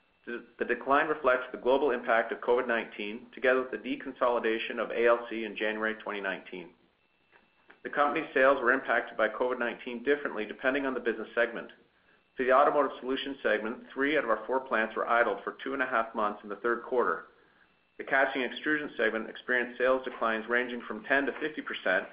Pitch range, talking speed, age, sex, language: 110-130 Hz, 190 wpm, 40-59, male, English